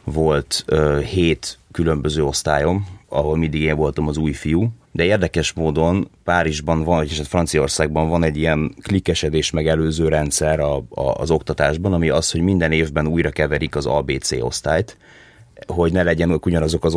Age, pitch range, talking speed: 30-49, 75-90 Hz, 165 wpm